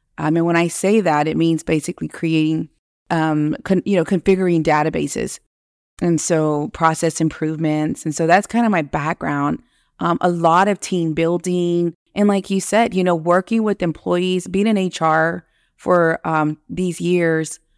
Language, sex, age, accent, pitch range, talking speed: English, female, 30-49, American, 160-185 Hz, 160 wpm